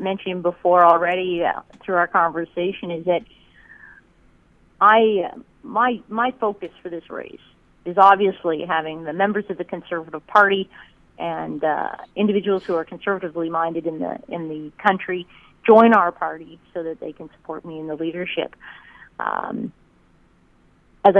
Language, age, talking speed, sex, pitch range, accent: English, 40-59, 145 wpm, female, 170-200 Hz, American